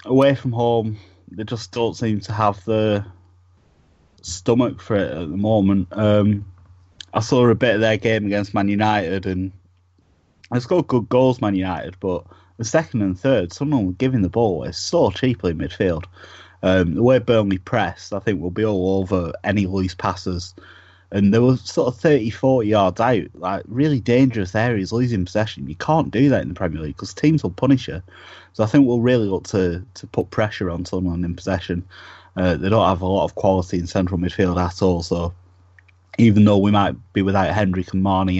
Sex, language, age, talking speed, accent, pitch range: male, English, 30-49, 200 wpm, British, 90-110 Hz